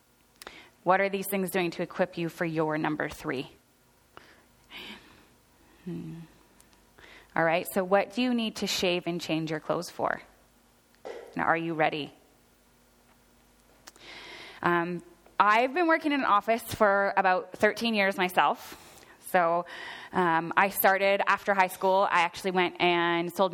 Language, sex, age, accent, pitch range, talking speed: English, female, 20-39, American, 175-205 Hz, 140 wpm